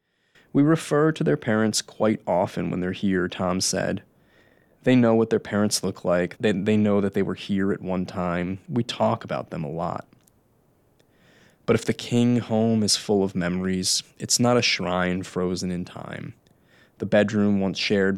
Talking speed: 180 wpm